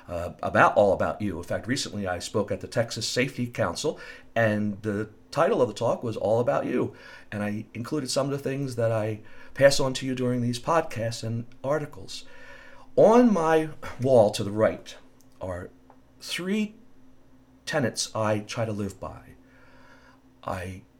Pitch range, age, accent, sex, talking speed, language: 105-140 Hz, 50-69, American, male, 165 wpm, English